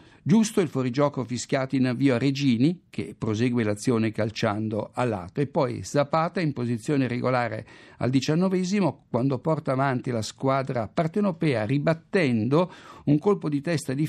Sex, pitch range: male, 120-160 Hz